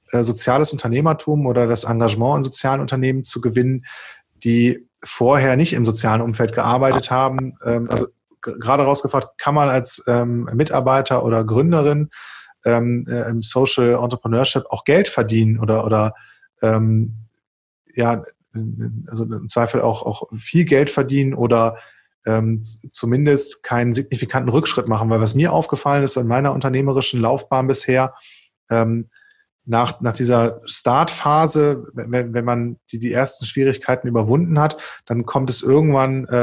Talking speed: 130 wpm